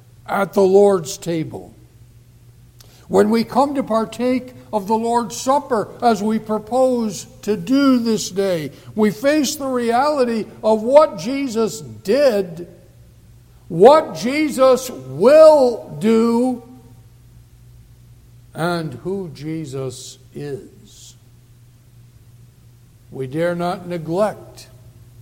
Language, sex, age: English, male, 60-79